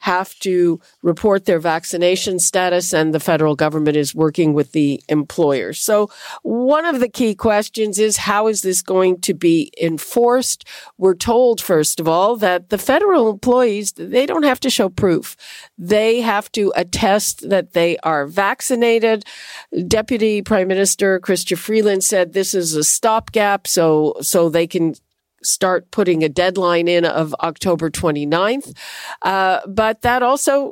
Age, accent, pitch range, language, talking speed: 50-69, American, 175-225 Hz, English, 150 wpm